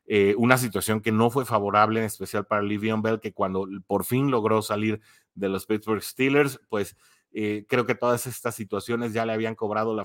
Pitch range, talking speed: 100-115 Hz, 205 wpm